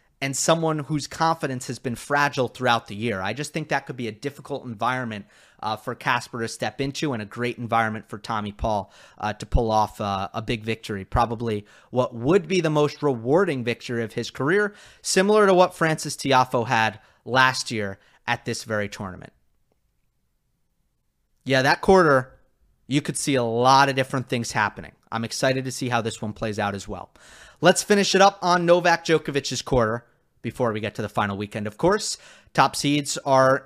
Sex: male